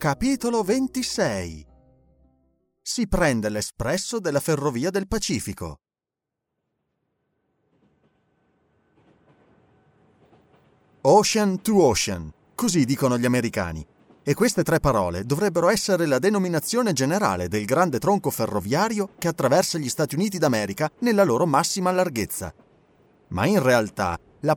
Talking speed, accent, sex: 105 wpm, native, male